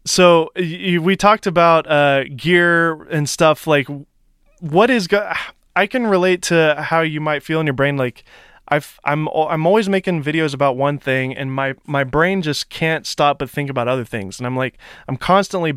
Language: English